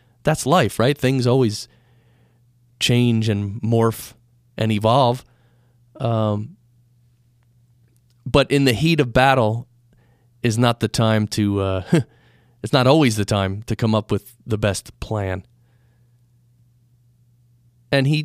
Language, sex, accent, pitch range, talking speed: English, male, American, 110-130 Hz, 120 wpm